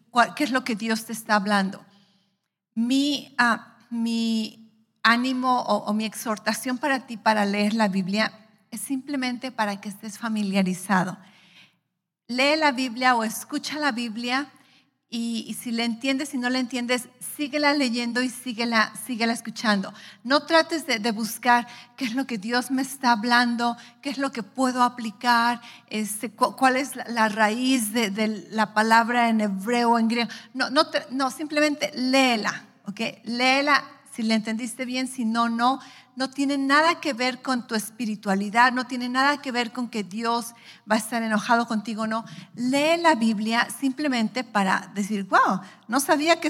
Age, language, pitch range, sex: 40-59, English, 215-260 Hz, female